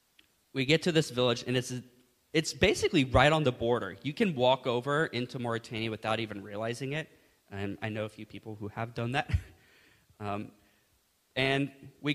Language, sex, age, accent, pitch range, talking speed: English, male, 20-39, American, 110-135 Hz, 180 wpm